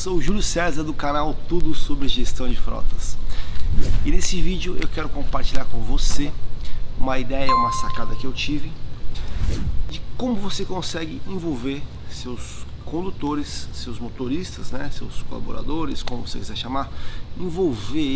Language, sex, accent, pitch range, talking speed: Portuguese, male, Brazilian, 120-150 Hz, 145 wpm